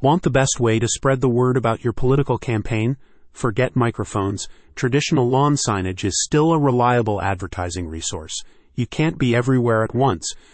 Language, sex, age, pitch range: English, male, 30-49, 105-135 Hz